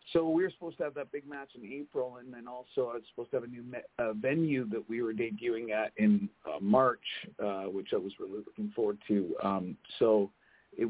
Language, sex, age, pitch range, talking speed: English, male, 50-69, 100-120 Hz, 235 wpm